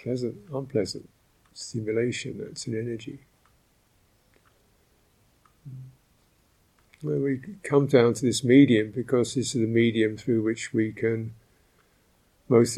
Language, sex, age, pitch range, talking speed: English, male, 50-69, 105-130 Hz, 105 wpm